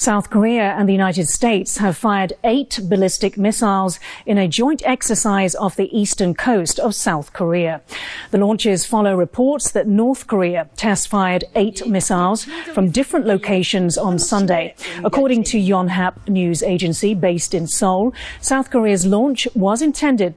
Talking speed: 145 wpm